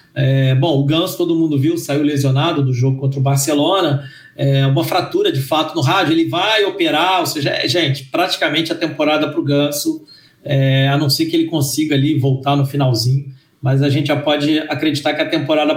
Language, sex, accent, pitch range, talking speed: Portuguese, male, Brazilian, 140-175 Hz, 205 wpm